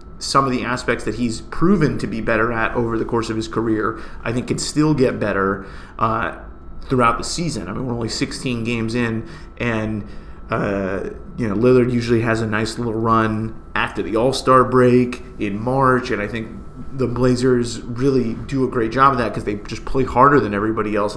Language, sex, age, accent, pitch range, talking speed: English, male, 30-49, American, 110-125 Hz, 200 wpm